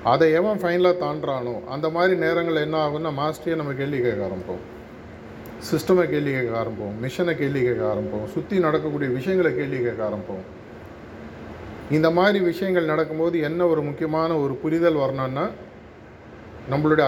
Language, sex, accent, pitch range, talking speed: Tamil, male, native, 135-170 Hz, 135 wpm